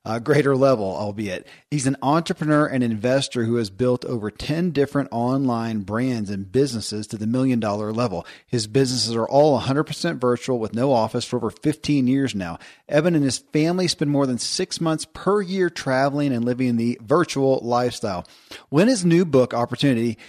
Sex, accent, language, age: male, American, English, 40-59